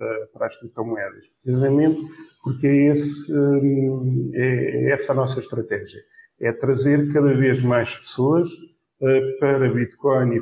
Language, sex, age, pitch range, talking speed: Portuguese, male, 50-69, 125-155 Hz, 125 wpm